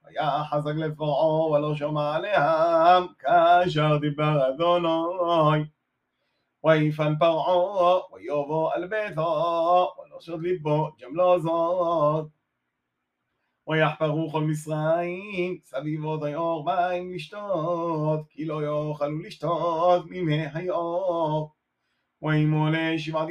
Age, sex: 30-49, male